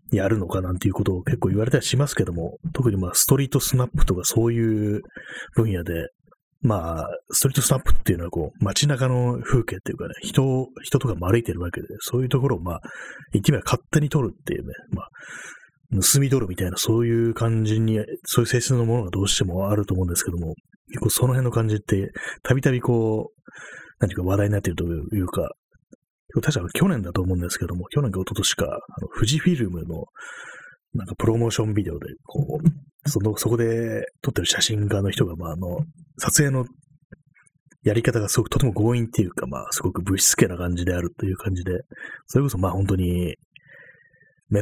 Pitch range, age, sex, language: 95-130 Hz, 30-49, male, Japanese